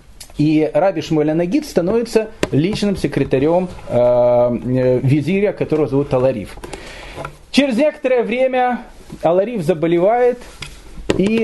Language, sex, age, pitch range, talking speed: Russian, male, 40-59, 140-195 Hz, 90 wpm